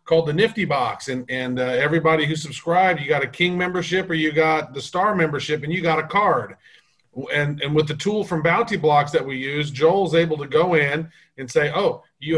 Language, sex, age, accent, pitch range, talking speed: English, male, 40-59, American, 155-190 Hz, 225 wpm